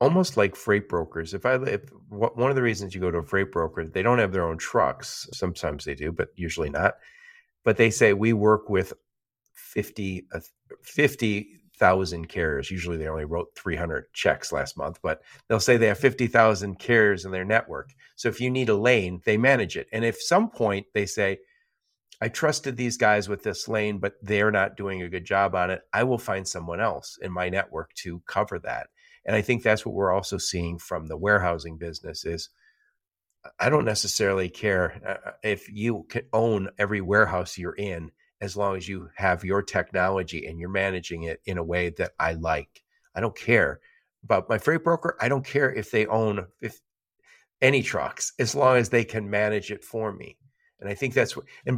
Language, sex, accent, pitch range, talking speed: English, male, American, 90-115 Hz, 195 wpm